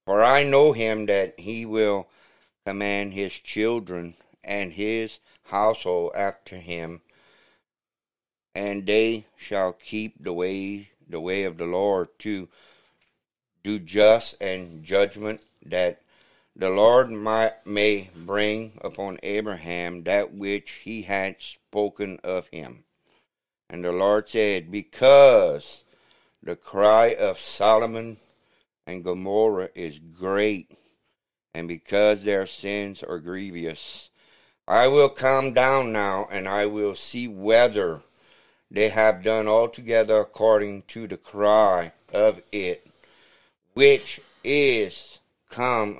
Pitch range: 100-110 Hz